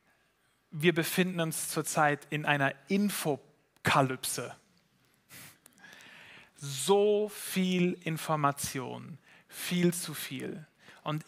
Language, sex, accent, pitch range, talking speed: German, male, German, 155-190 Hz, 75 wpm